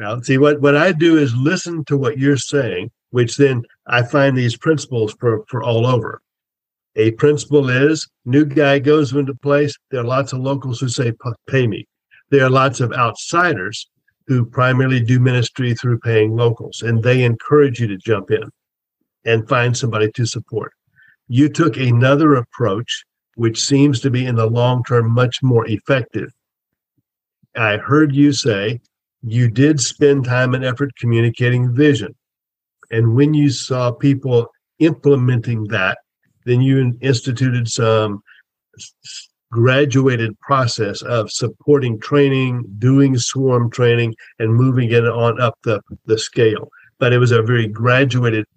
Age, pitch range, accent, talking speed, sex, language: 50-69, 115-140 Hz, American, 150 wpm, male, English